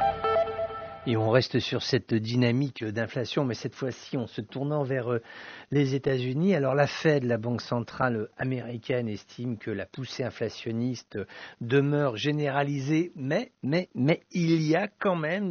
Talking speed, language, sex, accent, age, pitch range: 145 wpm, English, male, French, 60-79, 120-155 Hz